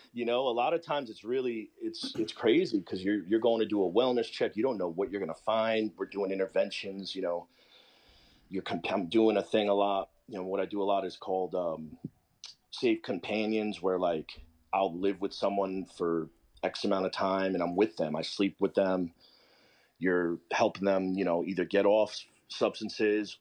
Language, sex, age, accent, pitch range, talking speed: English, male, 30-49, American, 85-110 Hz, 210 wpm